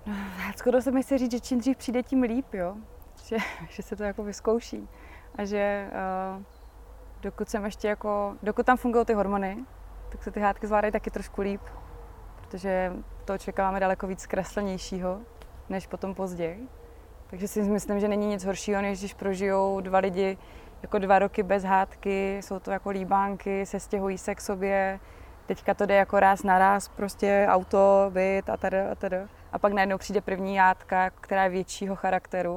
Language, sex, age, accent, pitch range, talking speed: Czech, female, 20-39, native, 185-210 Hz, 175 wpm